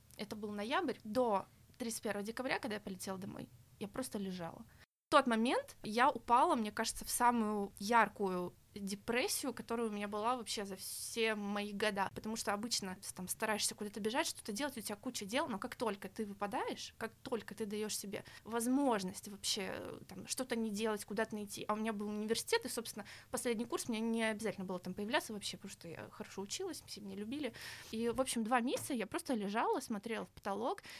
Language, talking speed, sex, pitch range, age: Russian, 190 wpm, female, 205-245 Hz, 20-39